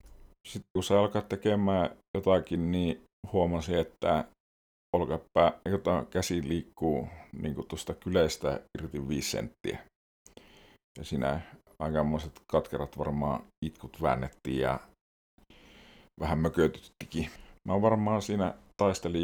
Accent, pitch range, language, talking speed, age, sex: native, 70-90 Hz, Finnish, 105 wpm, 50-69, male